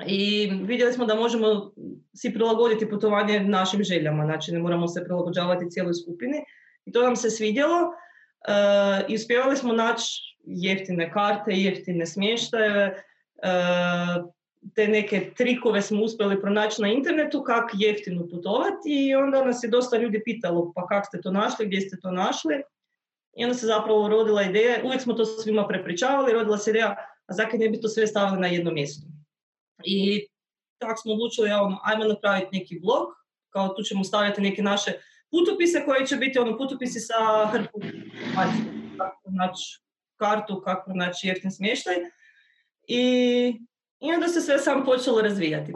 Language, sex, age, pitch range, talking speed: Croatian, female, 20-39, 185-235 Hz, 160 wpm